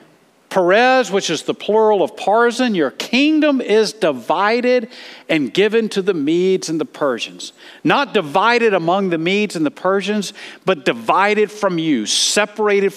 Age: 50-69